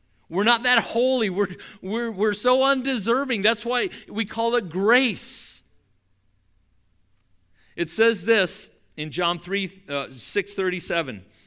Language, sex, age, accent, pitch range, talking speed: English, male, 50-69, American, 150-220 Hz, 110 wpm